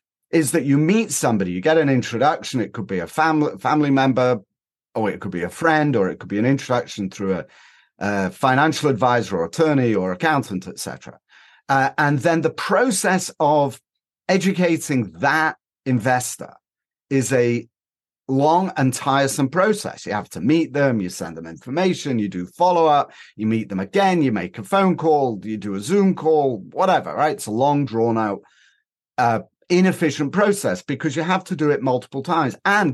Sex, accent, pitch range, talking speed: male, British, 120-170 Hz, 180 wpm